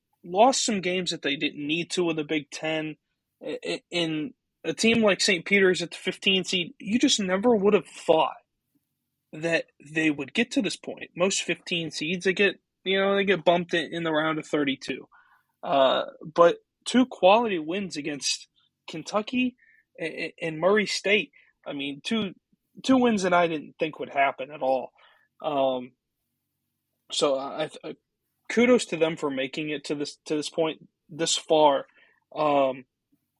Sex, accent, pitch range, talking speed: male, American, 155-205 Hz, 165 wpm